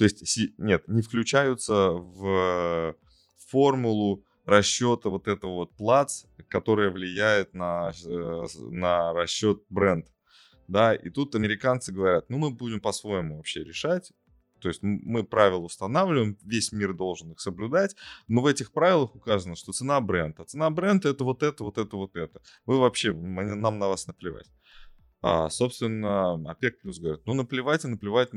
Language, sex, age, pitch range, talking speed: Russian, male, 20-39, 90-120 Hz, 145 wpm